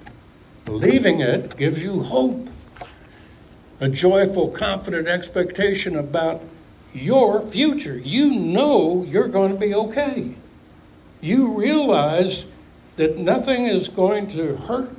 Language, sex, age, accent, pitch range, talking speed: English, male, 60-79, American, 115-185 Hz, 110 wpm